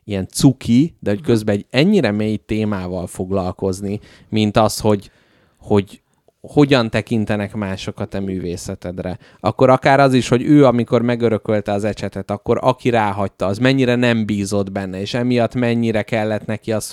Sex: male